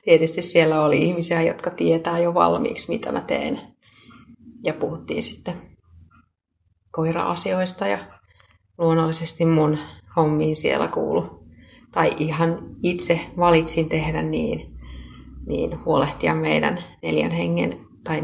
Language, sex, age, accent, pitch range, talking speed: Finnish, female, 30-49, native, 105-170 Hz, 110 wpm